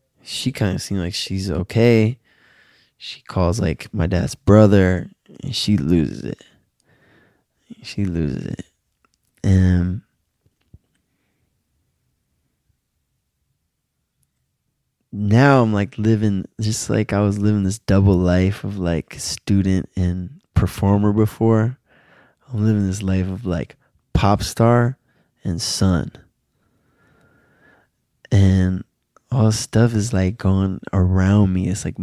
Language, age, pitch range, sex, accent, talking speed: English, 20-39, 95-115 Hz, male, American, 110 wpm